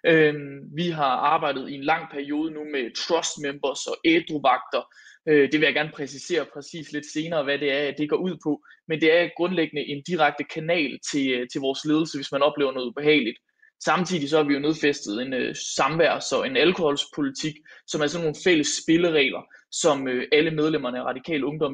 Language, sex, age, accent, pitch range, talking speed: Danish, male, 20-39, native, 145-170 Hz, 180 wpm